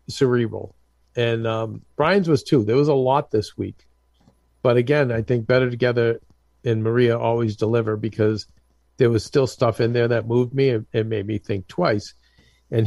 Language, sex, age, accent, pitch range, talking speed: English, male, 50-69, American, 90-130 Hz, 180 wpm